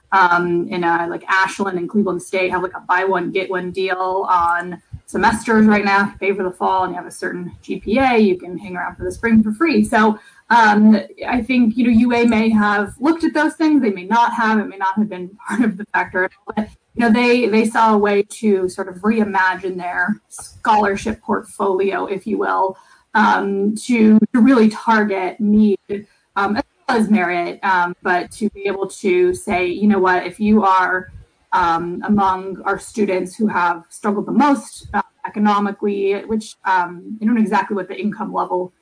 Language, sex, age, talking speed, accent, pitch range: English, female, 20-39, 200 wpm, American, 185-220 Hz